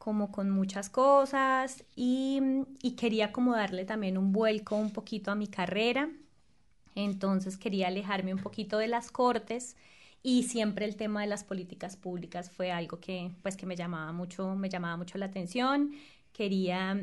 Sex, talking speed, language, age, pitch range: female, 165 wpm, Spanish, 20-39, 195-240 Hz